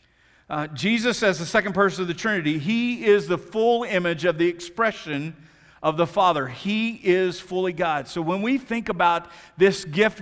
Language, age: English, 50-69